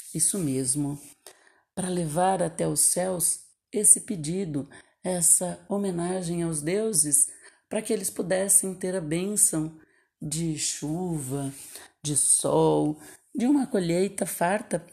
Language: Portuguese